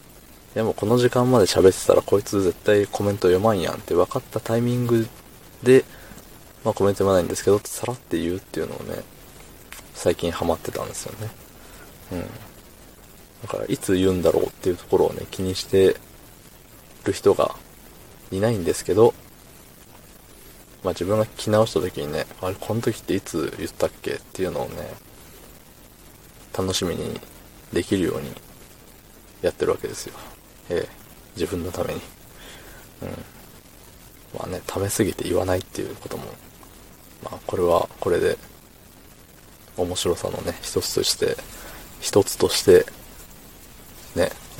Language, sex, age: Japanese, male, 20-39